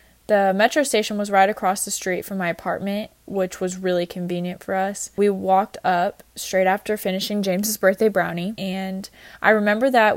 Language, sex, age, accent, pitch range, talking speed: English, female, 20-39, American, 185-215 Hz, 175 wpm